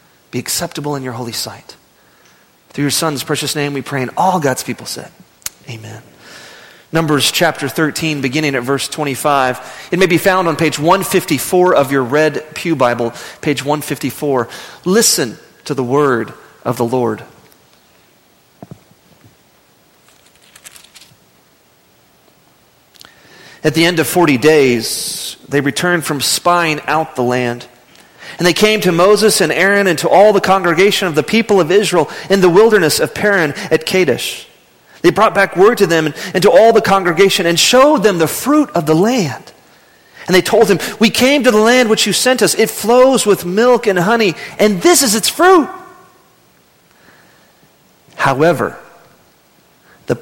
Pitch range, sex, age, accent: 145-205 Hz, male, 40-59, American